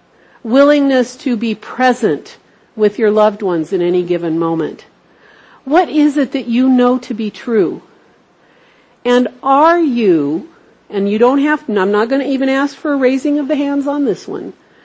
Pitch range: 220-280 Hz